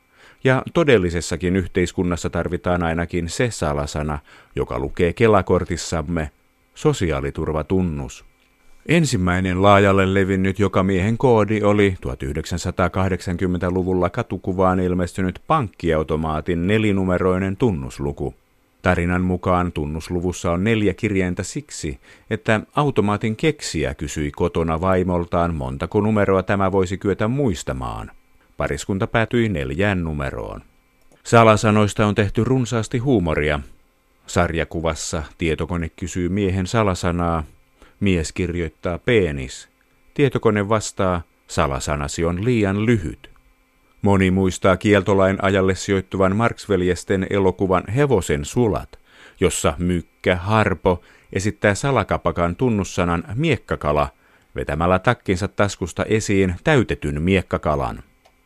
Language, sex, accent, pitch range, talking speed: Finnish, male, native, 85-105 Hz, 90 wpm